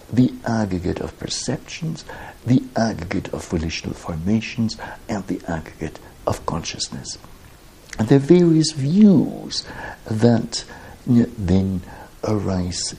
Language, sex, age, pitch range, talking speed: English, male, 60-79, 95-135 Hz, 100 wpm